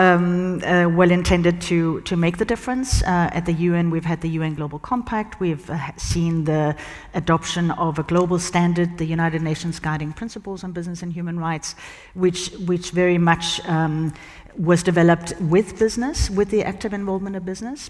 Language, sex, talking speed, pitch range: English, female, 190 wpm, 160-195 Hz